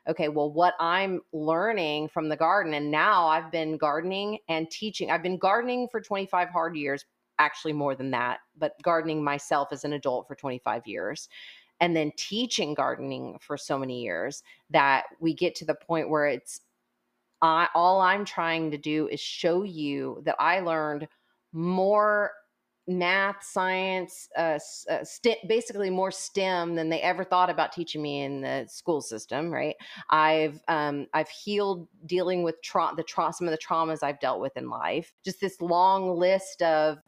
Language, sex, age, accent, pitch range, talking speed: English, female, 30-49, American, 150-185 Hz, 170 wpm